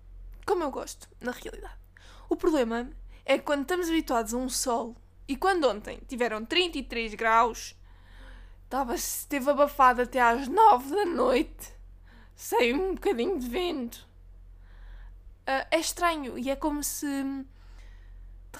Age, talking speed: 20-39, 135 wpm